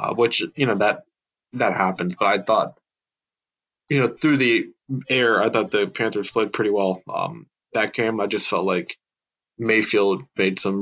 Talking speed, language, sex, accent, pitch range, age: 175 wpm, English, male, American, 100-120 Hz, 20-39